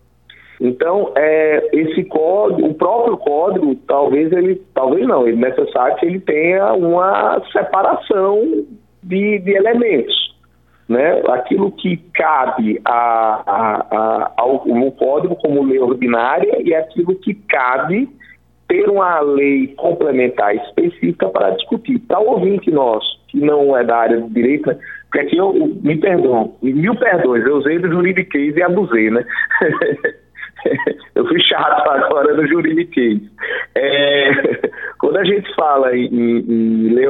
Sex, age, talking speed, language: male, 50-69, 130 wpm, Portuguese